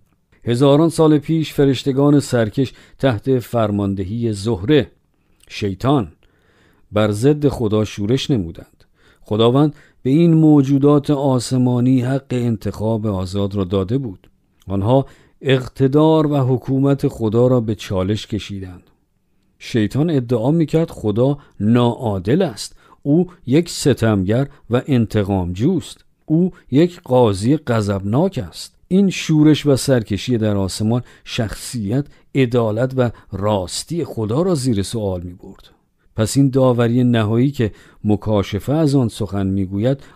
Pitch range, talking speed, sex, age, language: 105-140 Hz, 115 wpm, male, 50-69, Persian